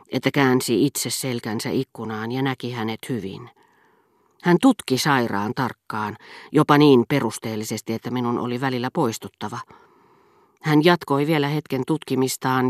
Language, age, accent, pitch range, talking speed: Finnish, 40-59, native, 120-155 Hz, 125 wpm